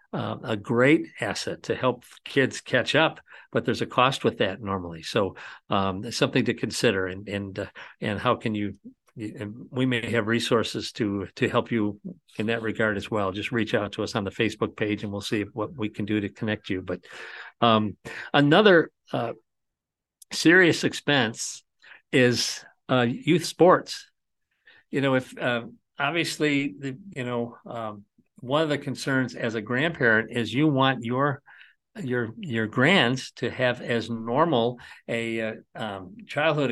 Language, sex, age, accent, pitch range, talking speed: English, male, 50-69, American, 110-140 Hz, 165 wpm